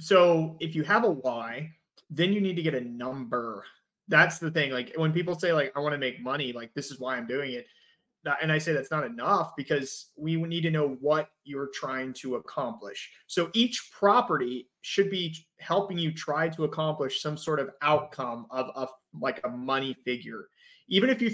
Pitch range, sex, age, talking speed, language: 140-190 Hz, male, 30-49, 200 wpm, English